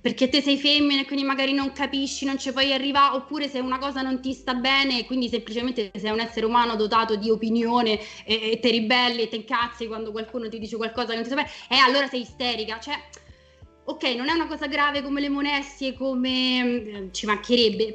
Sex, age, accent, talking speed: female, 20-39, native, 220 wpm